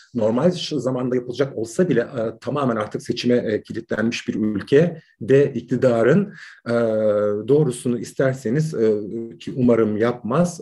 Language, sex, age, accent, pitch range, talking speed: Turkish, male, 40-59, native, 115-140 Hz, 125 wpm